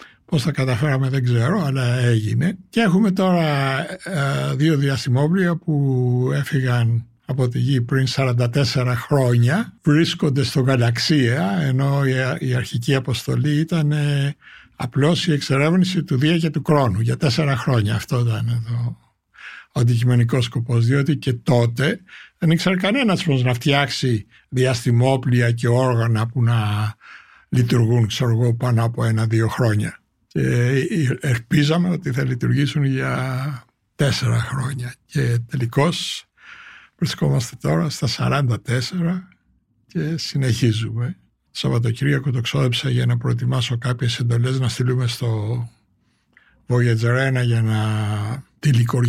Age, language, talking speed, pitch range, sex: 60-79, Greek, 115 wpm, 120-145 Hz, male